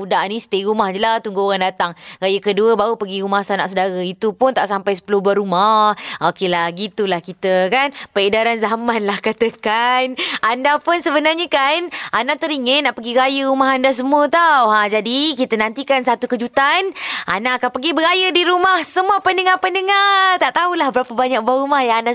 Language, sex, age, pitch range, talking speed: Malay, female, 20-39, 200-280 Hz, 175 wpm